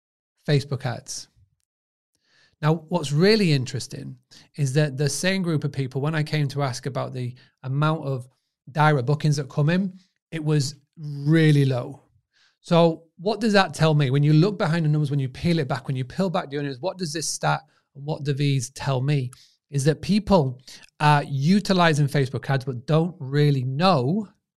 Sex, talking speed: male, 180 wpm